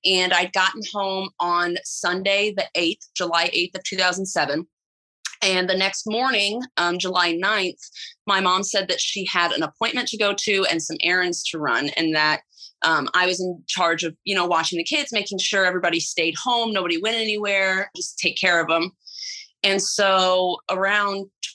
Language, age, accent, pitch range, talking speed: English, 30-49, American, 165-195 Hz, 180 wpm